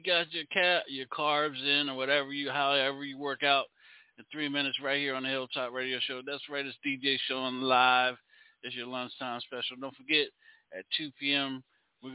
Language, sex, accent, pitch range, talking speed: English, male, American, 130-150 Hz, 195 wpm